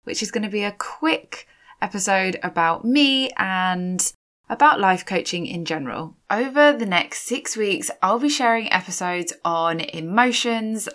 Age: 20-39